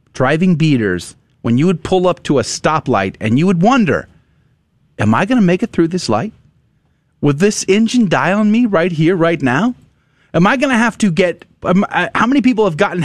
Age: 30-49